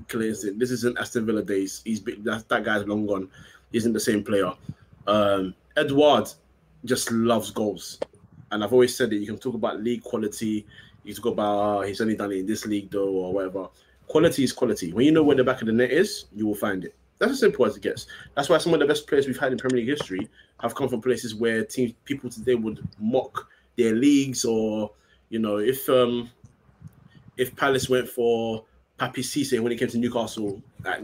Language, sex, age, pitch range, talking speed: English, male, 20-39, 105-125 Hz, 220 wpm